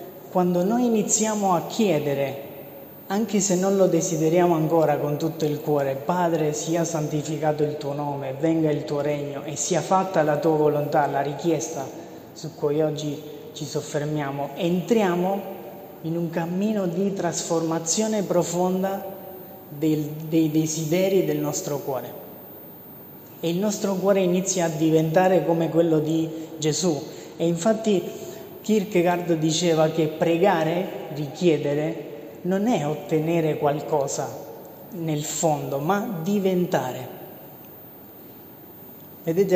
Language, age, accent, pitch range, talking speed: Italian, 20-39, native, 155-185 Hz, 120 wpm